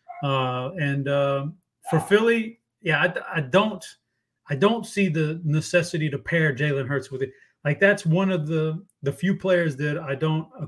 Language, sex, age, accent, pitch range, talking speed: English, male, 30-49, American, 140-175 Hz, 180 wpm